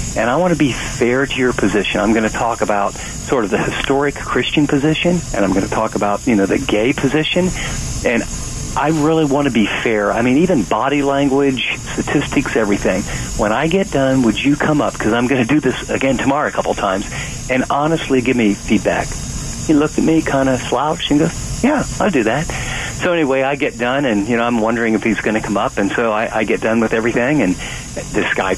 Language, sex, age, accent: English, male, 50-69, American